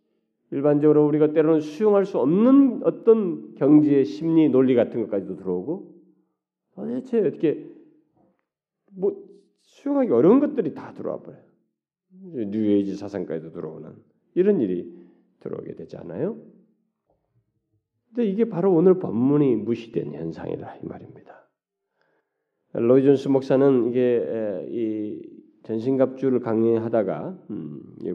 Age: 40-59